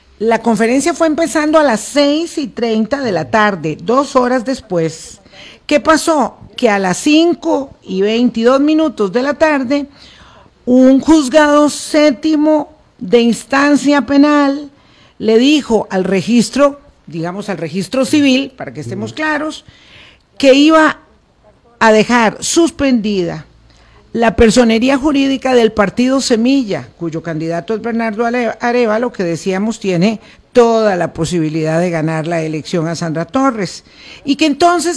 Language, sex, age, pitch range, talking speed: Spanish, female, 50-69, 200-280 Hz, 135 wpm